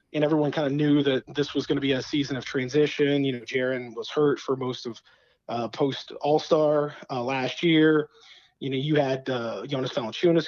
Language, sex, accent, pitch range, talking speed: English, male, American, 140-160 Hz, 200 wpm